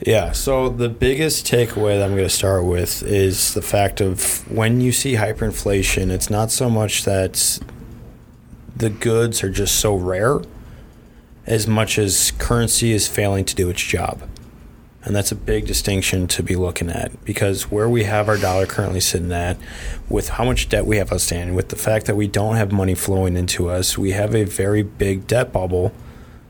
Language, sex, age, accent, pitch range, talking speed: English, male, 20-39, American, 95-115 Hz, 190 wpm